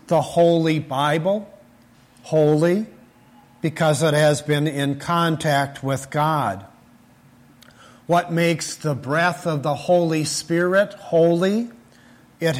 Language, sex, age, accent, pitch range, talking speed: English, male, 50-69, American, 125-170 Hz, 105 wpm